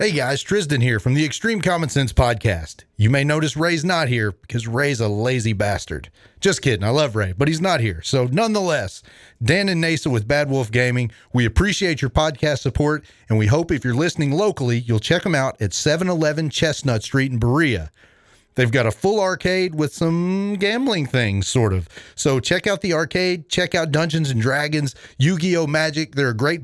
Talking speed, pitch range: 195 wpm, 125-175 Hz